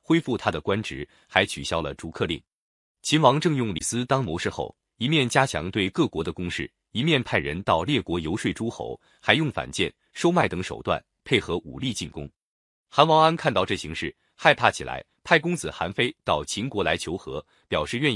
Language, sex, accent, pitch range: Chinese, male, native, 90-145 Hz